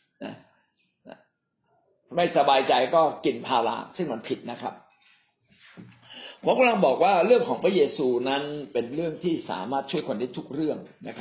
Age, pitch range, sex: 60-79, 145-215 Hz, male